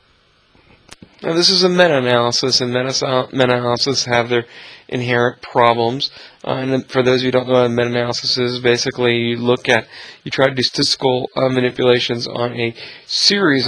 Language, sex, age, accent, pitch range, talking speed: English, male, 40-59, American, 120-135 Hz, 165 wpm